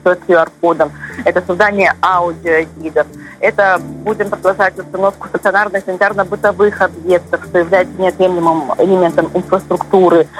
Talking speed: 90 wpm